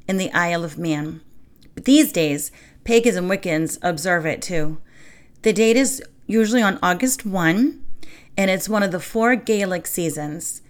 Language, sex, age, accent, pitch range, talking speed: English, female, 40-59, American, 165-225 Hz, 165 wpm